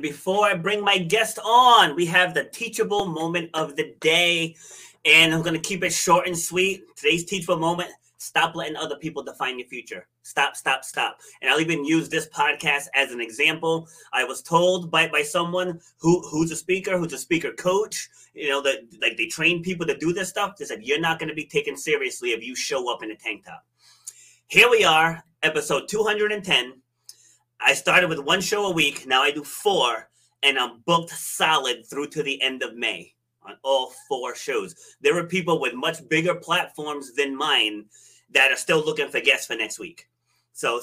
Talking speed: 200 wpm